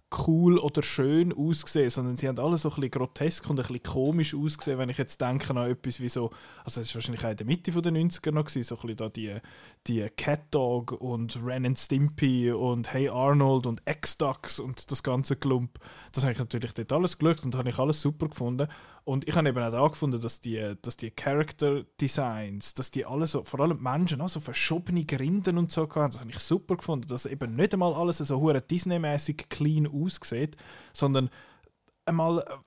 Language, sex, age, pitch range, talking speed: German, male, 20-39, 130-155 Hz, 210 wpm